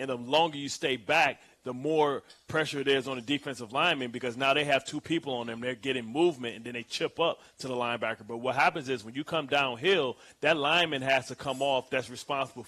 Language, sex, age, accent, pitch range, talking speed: English, male, 30-49, American, 125-145 Hz, 235 wpm